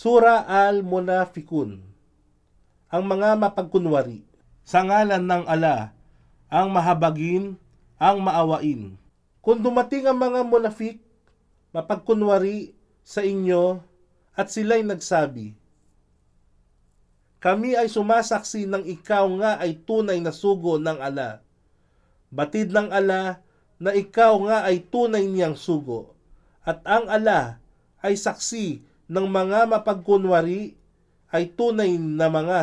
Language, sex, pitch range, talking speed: Filipino, male, 145-210 Hz, 105 wpm